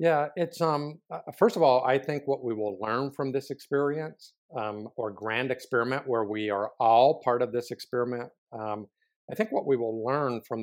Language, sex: English, male